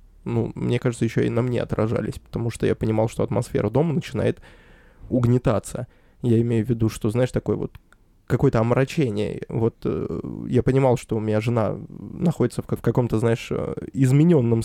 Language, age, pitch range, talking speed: Russian, 20-39, 110-130 Hz, 170 wpm